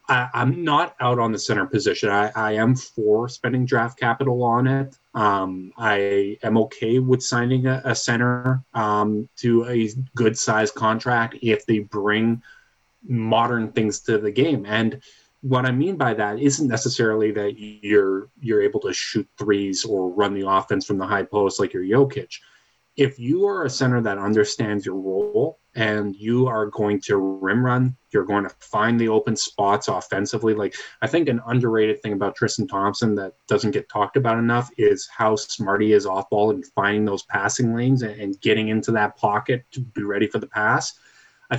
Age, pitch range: 30-49, 105-130 Hz